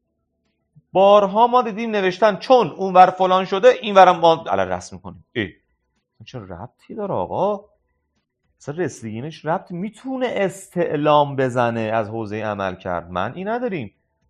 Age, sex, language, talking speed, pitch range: 40-59, male, Persian, 135 wpm, 115-185 Hz